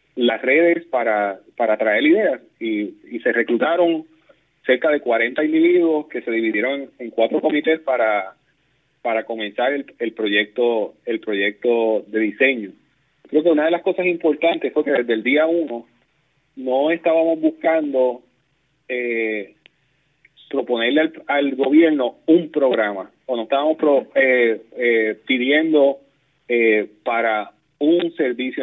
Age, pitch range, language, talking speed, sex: 30-49, 120-160 Hz, Spanish, 135 wpm, male